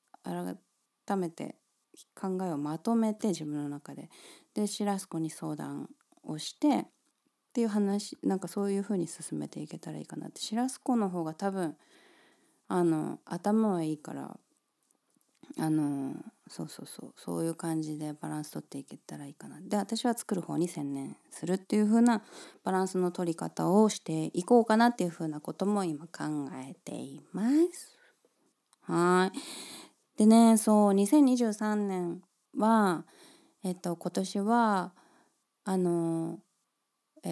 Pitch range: 160-225 Hz